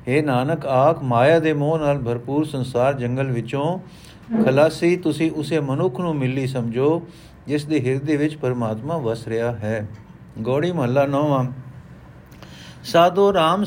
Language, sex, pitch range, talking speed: Punjabi, male, 145-180 Hz, 135 wpm